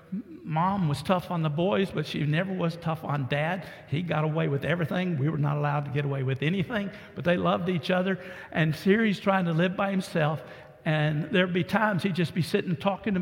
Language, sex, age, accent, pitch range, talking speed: English, male, 50-69, American, 155-190 Hz, 225 wpm